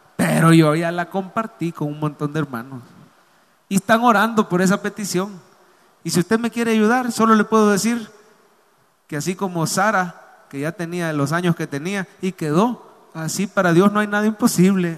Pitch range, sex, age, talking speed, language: 160-215 Hz, male, 30-49, 185 wpm, English